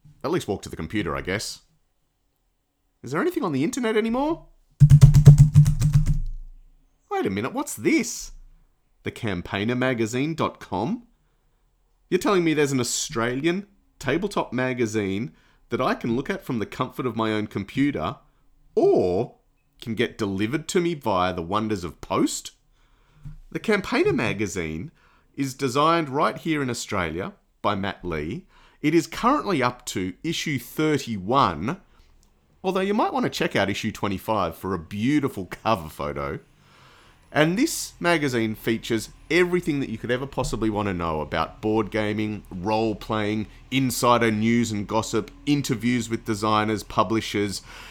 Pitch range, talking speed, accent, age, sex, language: 105-155 Hz, 140 wpm, Australian, 30-49, male, English